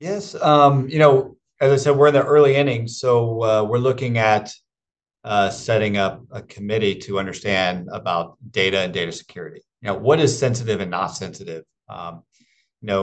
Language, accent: English, American